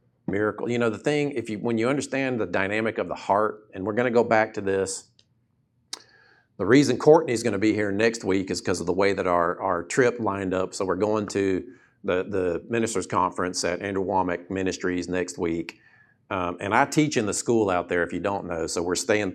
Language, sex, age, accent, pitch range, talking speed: English, male, 50-69, American, 100-140 Hz, 225 wpm